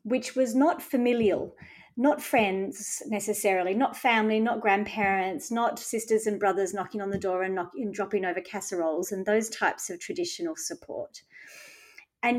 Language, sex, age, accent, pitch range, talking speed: English, female, 30-49, Australian, 200-265 Hz, 150 wpm